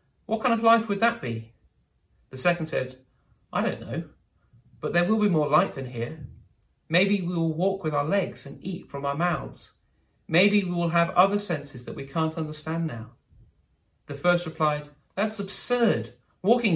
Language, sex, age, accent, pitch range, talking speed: English, male, 30-49, British, 120-185 Hz, 180 wpm